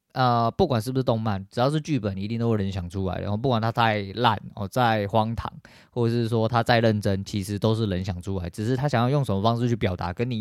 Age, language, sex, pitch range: 20-39, Chinese, male, 100-135 Hz